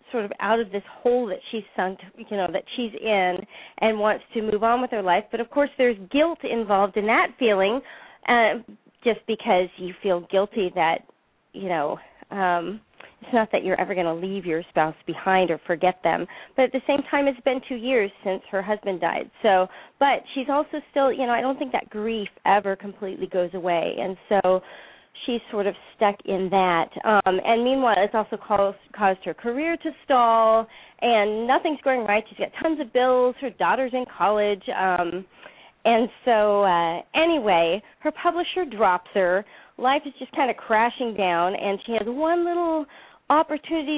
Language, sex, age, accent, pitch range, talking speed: English, female, 40-59, American, 190-255 Hz, 190 wpm